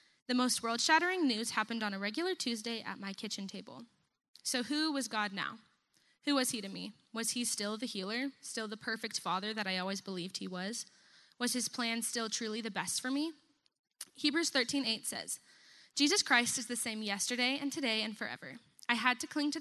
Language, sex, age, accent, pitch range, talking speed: English, female, 10-29, American, 210-260 Hz, 200 wpm